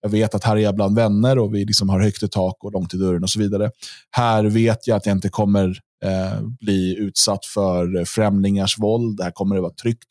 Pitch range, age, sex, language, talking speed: 100-120 Hz, 20-39, male, Swedish, 235 wpm